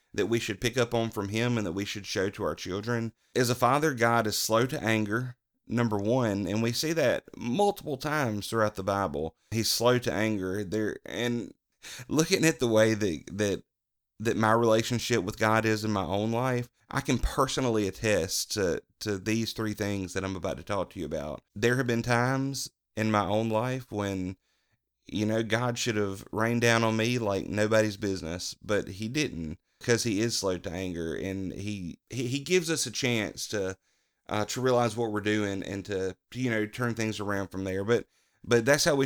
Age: 30-49